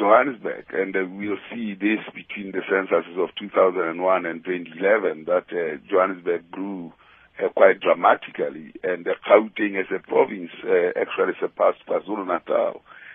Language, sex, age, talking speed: English, male, 50-69, 135 wpm